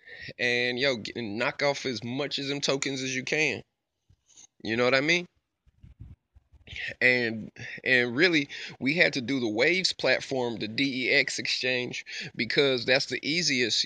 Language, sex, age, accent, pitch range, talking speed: English, male, 20-39, American, 120-145 Hz, 145 wpm